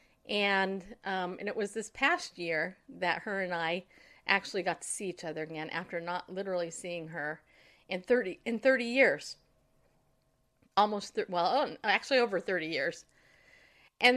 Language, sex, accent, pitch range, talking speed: English, female, American, 185-245 Hz, 160 wpm